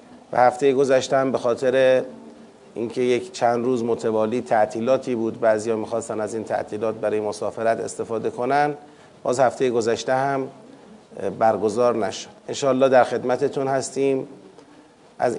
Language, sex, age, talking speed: Persian, male, 40-59, 130 wpm